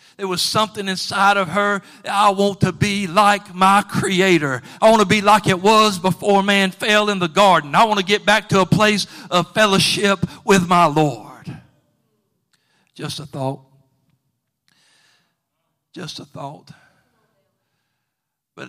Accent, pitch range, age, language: American, 140-165 Hz, 60-79, English